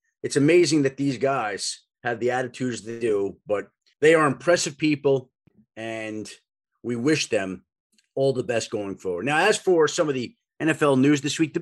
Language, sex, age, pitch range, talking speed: English, male, 30-49, 115-155 Hz, 180 wpm